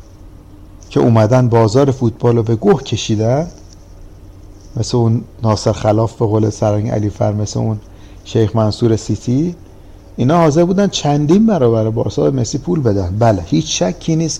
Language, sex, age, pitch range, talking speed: Persian, male, 50-69, 100-135 Hz, 150 wpm